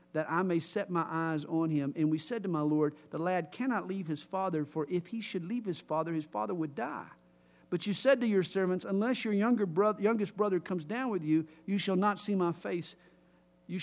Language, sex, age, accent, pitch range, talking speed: English, male, 50-69, American, 160-205 Hz, 230 wpm